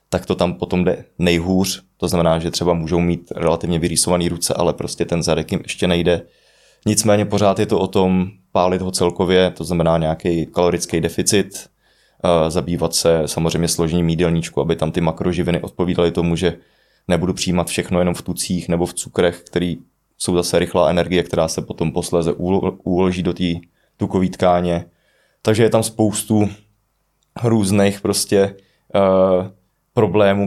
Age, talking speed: 20-39, 155 wpm